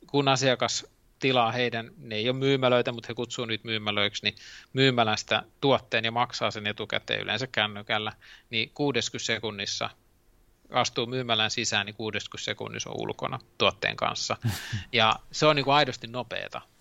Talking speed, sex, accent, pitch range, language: 150 wpm, male, native, 110-130 Hz, Finnish